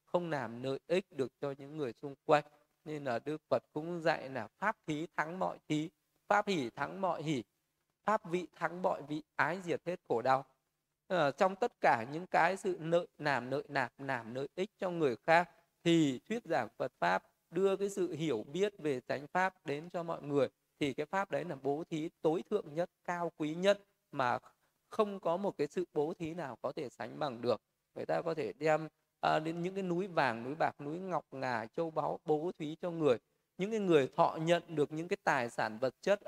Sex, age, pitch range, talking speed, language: male, 20-39, 145-180 Hz, 225 wpm, Vietnamese